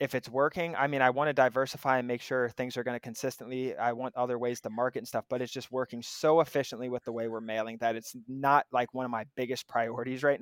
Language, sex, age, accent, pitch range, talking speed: English, male, 20-39, American, 120-135 Hz, 265 wpm